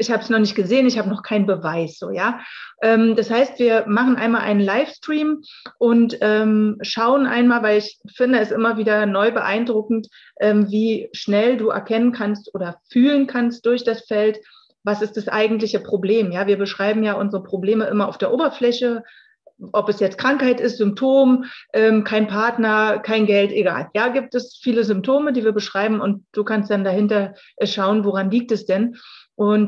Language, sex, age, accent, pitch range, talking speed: German, female, 30-49, German, 205-245 Hz, 175 wpm